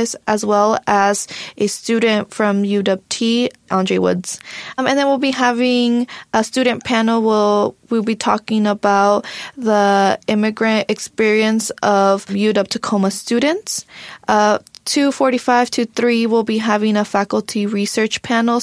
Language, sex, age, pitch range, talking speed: English, female, 20-39, 205-235 Hz, 130 wpm